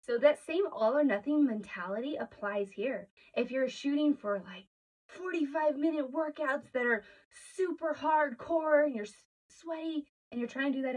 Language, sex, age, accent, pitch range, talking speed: English, female, 20-39, American, 215-300 Hz, 165 wpm